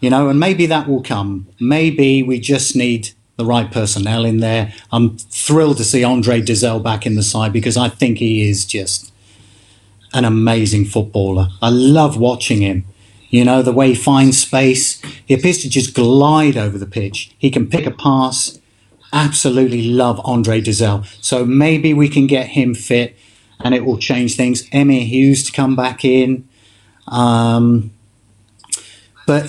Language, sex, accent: English, male, British